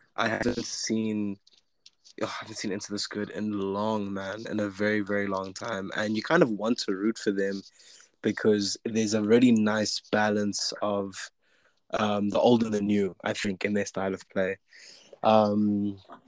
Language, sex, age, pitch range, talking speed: English, male, 20-39, 100-110 Hz, 175 wpm